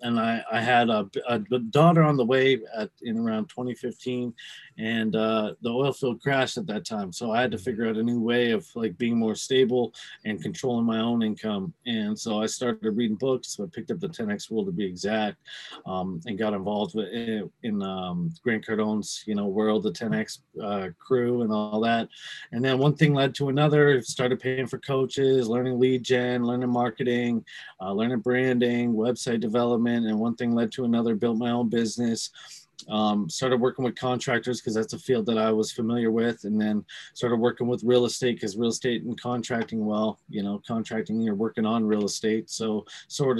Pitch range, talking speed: 110-130 Hz, 195 wpm